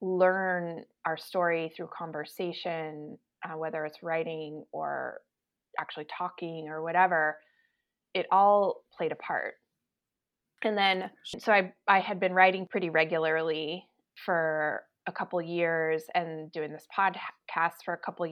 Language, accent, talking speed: English, American, 135 wpm